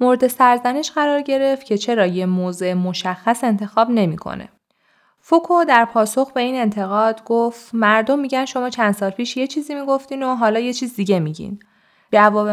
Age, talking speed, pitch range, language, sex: 20-39, 165 wpm, 180-235 Hz, Persian, female